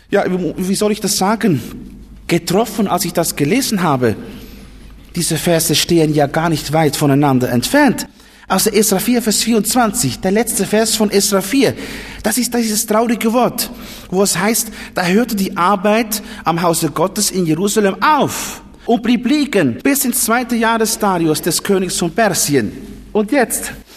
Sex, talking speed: male, 165 wpm